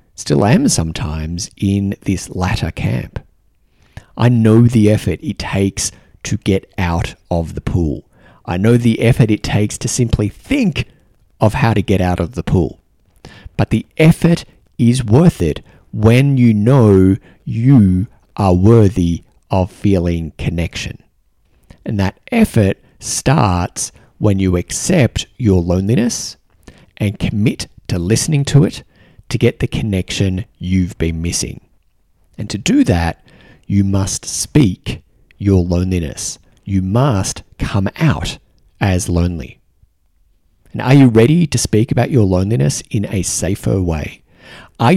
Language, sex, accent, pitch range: English, male, Australian, 90-120 Hz